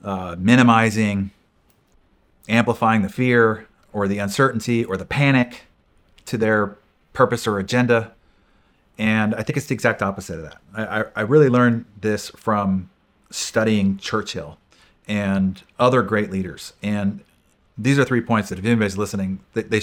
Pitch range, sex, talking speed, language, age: 100-125 Hz, male, 145 wpm, English, 30-49